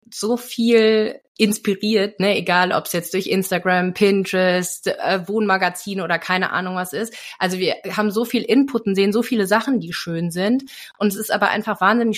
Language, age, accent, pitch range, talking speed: German, 30-49, German, 175-205 Hz, 185 wpm